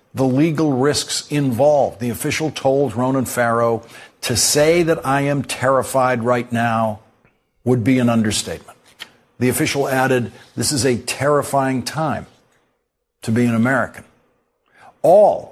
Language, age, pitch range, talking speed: English, 60-79, 120-145 Hz, 130 wpm